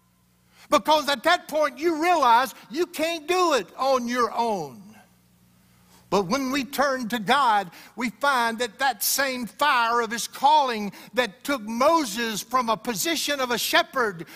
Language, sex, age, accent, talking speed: English, male, 60-79, American, 155 wpm